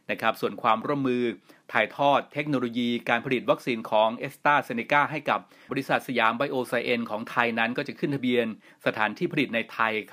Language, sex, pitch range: Thai, male, 110-140 Hz